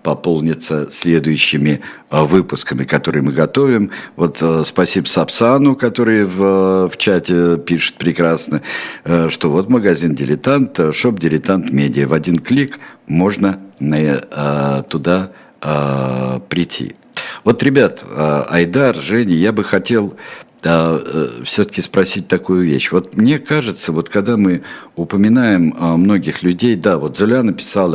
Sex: male